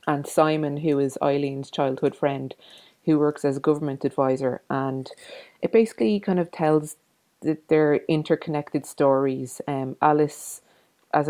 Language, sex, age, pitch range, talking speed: English, female, 30-49, 135-150 Hz, 140 wpm